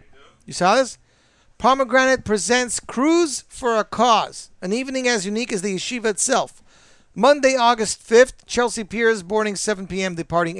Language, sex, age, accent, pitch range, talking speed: English, male, 50-69, American, 180-230 Hz, 145 wpm